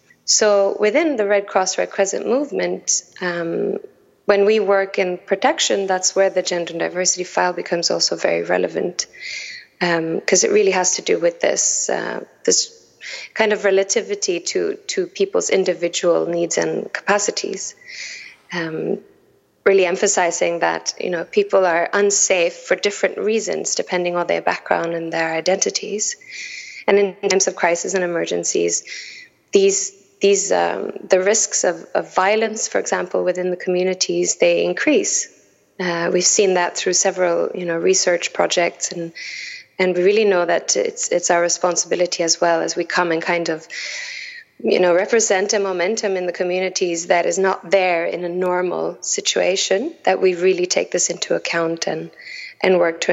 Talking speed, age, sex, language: 160 wpm, 20-39, female, English